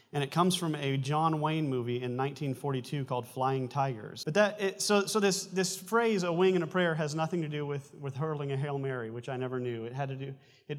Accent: American